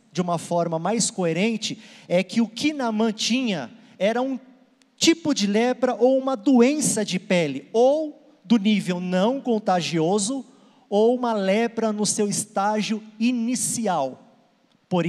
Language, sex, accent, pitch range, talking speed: Portuguese, male, Brazilian, 185-235 Hz, 135 wpm